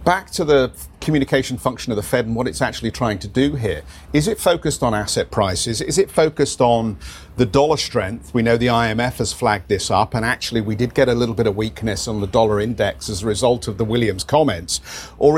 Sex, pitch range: male, 105-135 Hz